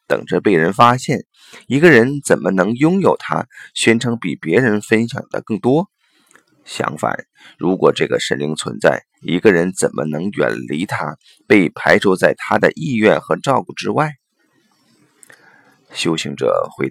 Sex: male